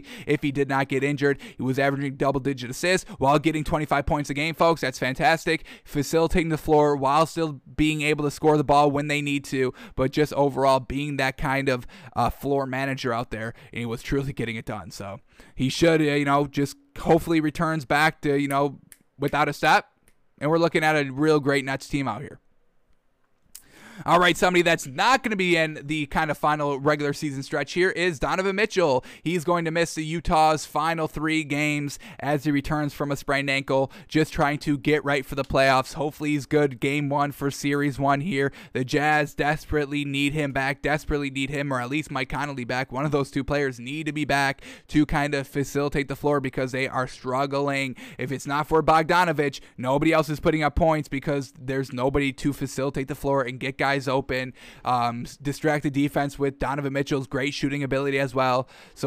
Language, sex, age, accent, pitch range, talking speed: English, male, 20-39, American, 135-150 Hz, 205 wpm